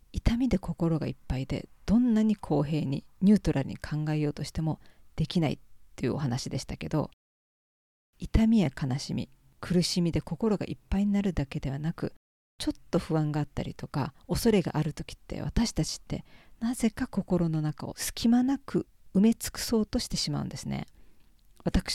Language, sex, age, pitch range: Japanese, female, 40-59, 150-195 Hz